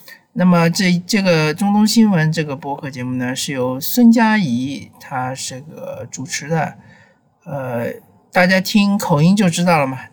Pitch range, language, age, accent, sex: 135-185 Hz, Chinese, 50-69, native, male